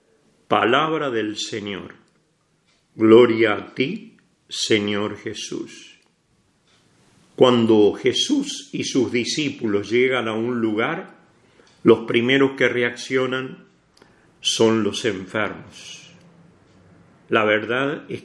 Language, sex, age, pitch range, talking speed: English, male, 50-69, 115-150 Hz, 90 wpm